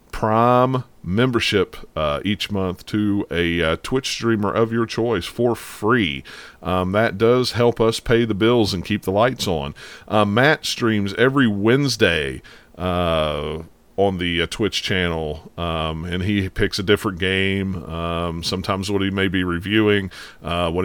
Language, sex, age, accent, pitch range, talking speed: English, male, 40-59, American, 90-110 Hz, 160 wpm